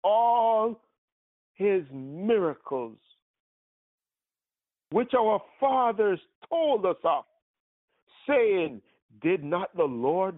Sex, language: male, English